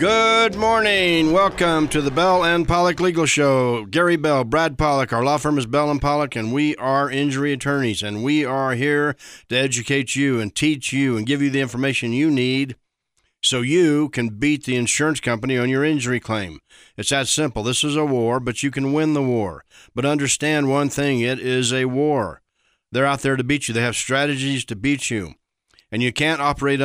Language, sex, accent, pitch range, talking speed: English, male, American, 120-150 Hz, 200 wpm